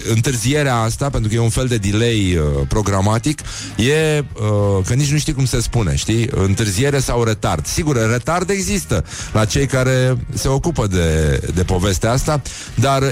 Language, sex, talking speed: Romanian, male, 170 wpm